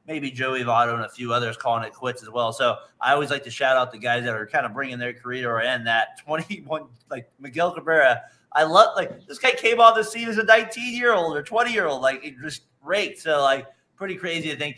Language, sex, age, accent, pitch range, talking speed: English, male, 30-49, American, 125-155 Hz, 250 wpm